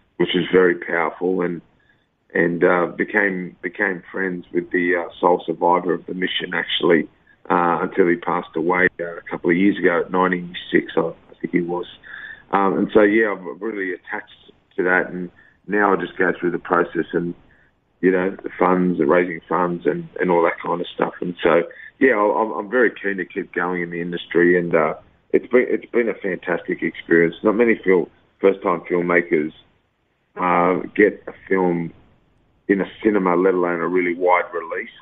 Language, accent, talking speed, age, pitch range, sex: English, Australian, 185 wpm, 40-59, 85-95 Hz, male